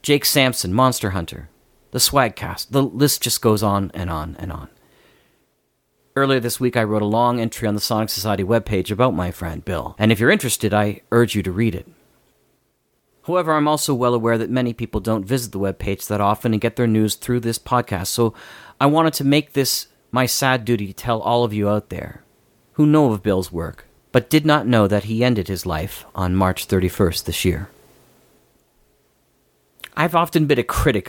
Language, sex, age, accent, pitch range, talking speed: English, male, 40-59, American, 95-125 Hz, 200 wpm